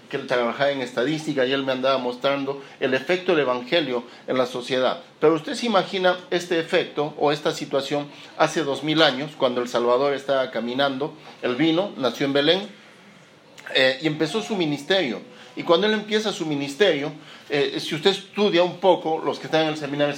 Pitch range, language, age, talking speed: 135-175 Hz, Spanish, 40-59, 185 wpm